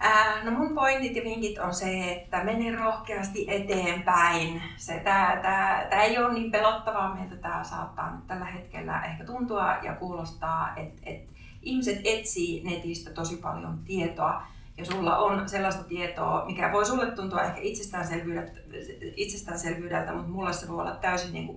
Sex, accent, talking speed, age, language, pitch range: female, native, 160 wpm, 30-49, Finnish, 165-205 Hz